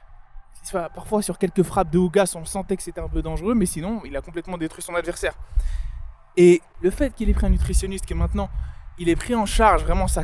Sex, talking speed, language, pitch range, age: male, 225 wpm, French, 150-200 Hz, 20-39